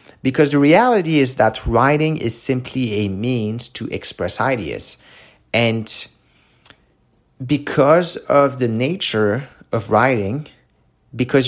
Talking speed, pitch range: 110 wpm, 105-130 Hz